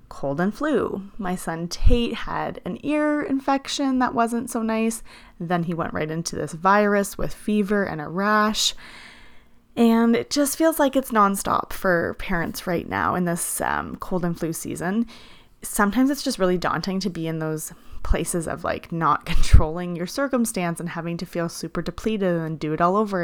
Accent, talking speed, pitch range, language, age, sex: American, 185 wpm, 165-215 Hz, English, 30-49, female